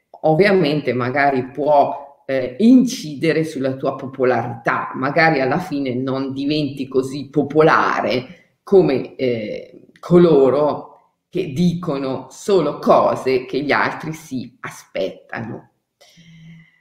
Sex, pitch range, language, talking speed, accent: female, 140-185 Hz, Italian, 95 wpm, native